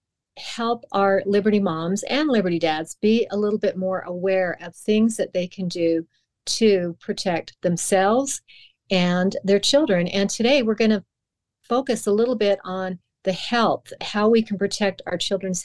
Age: 40-59